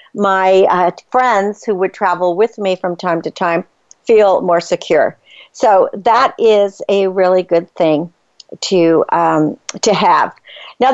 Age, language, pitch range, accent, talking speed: 50-69, English, 190-245 Hz, American, 150 wpm